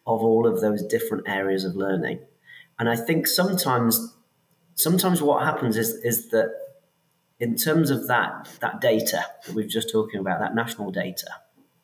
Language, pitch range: English, 110-150 Hz